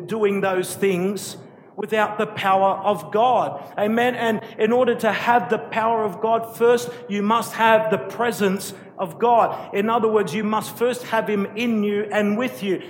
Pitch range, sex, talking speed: 160-215 Hz, male, 180 wpm